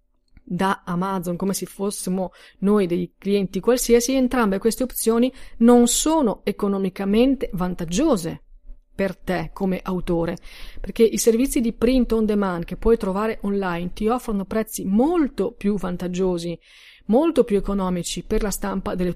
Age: 40-59